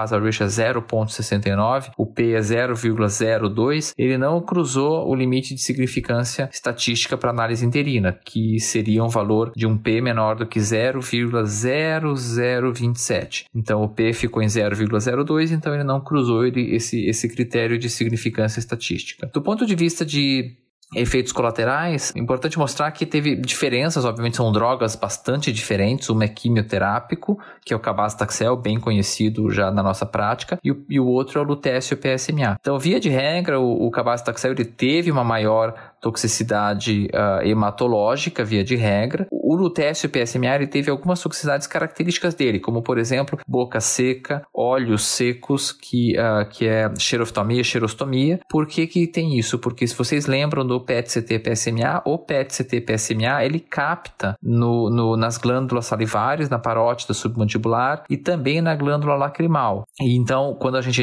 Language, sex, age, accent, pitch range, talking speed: Portuguese, male, 20-39, Brazilian, 115-140 Hz, 155 wpm